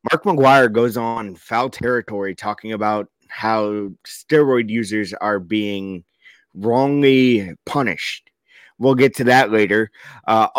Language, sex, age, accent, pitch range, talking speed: English, male, 30-49, American, 100-140 Hz, 120 wpm